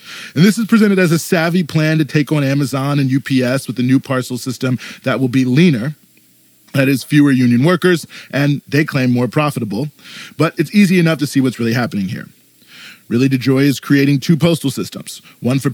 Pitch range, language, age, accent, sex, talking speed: 125-150 Hz, English, 30-49, American, male, 200 wpm